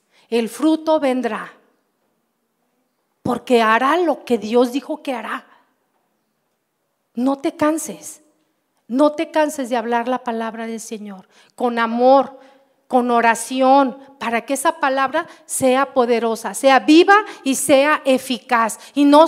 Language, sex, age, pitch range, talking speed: Spanish, female, 40-59, 245-320 Hz, 125 wpm